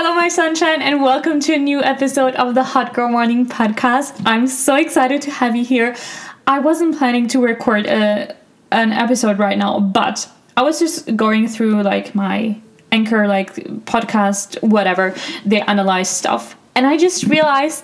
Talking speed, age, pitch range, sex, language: 170 wpm, 10-29, 205-265 Hz, female, English